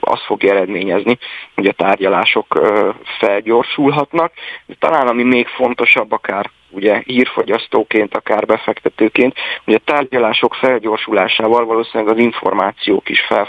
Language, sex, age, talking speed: Hungarian, male, 30-49, 115 wpm